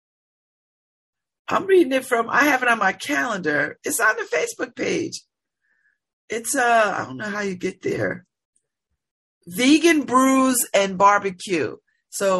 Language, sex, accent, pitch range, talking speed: English, female, American, 180-260 Hz, 140 wpm